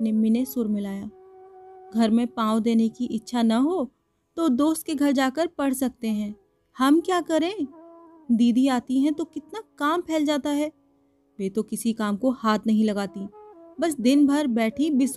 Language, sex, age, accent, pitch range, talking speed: Hindi, female, 30-49, native, 230-325 Hz, 85 wpm